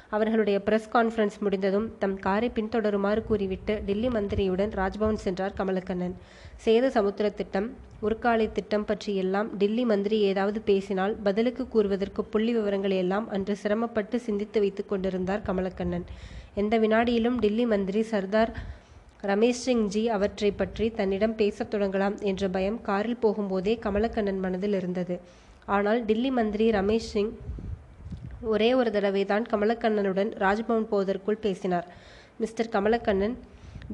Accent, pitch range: native, 200-225 Hz